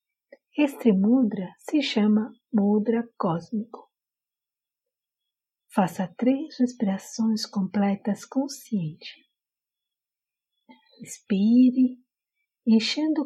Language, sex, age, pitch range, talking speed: Portuguese, female, 50-69, 200-270 Hz, 60 wpm